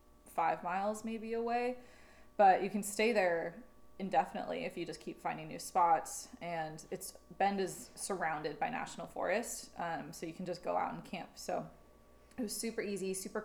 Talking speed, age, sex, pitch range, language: 180 wpm, 20-39, female, 165-205 Hz, English